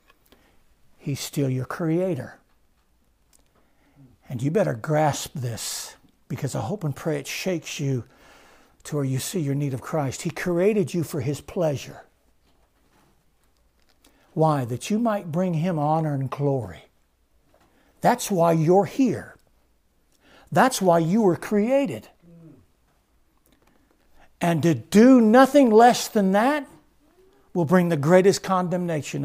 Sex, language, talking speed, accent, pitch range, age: male, English, 125 wpm, American, 120-180 Hz, 60-79